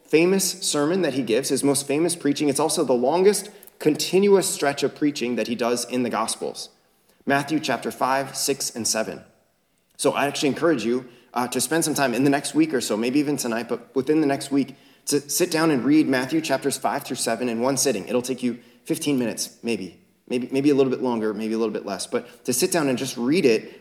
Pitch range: 135-175 Hz